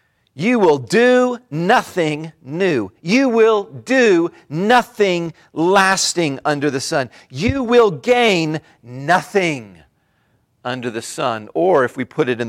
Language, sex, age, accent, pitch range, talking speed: English, male, 40-59, American, 120-185 Hz, 125 wpm